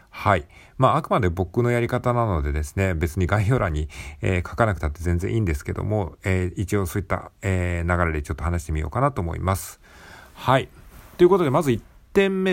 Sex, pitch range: male, 85-125 Hz